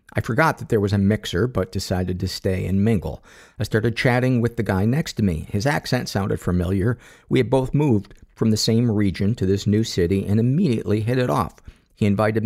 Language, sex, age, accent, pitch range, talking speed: English, male, 50-69, American, 95-125 Hz, 215 wpm